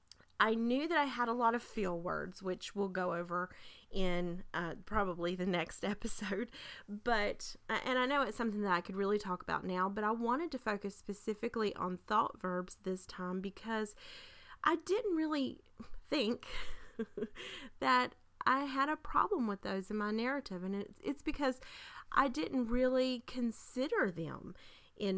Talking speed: 165 wpm